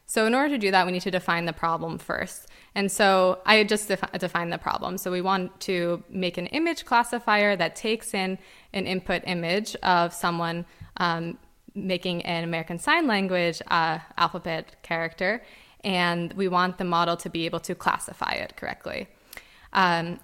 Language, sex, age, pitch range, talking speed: English, female, 20-39, 170-195 Hz, 175 wpm